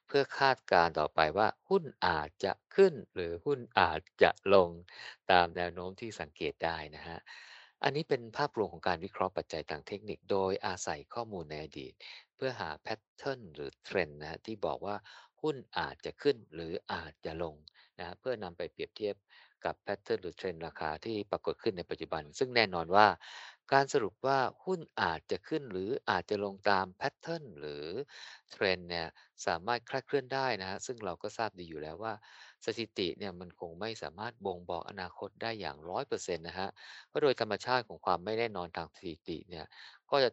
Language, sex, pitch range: Thai, male, 85-115 Hz